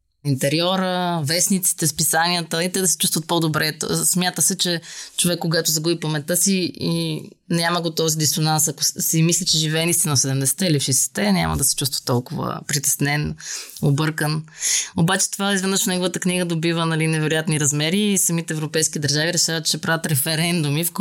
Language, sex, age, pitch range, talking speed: Bulgarian, female, 20-39, 150-180 Hz, 155 wpm